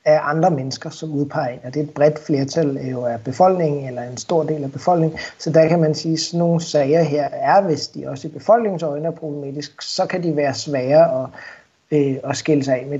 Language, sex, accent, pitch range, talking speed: Danish, male, native, 140-165 Hz, 225 wpm